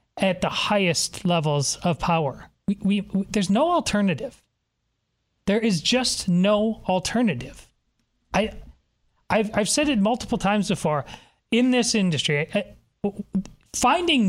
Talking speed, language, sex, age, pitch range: 120 wpm, English, male, 40-59, 165-220 Hz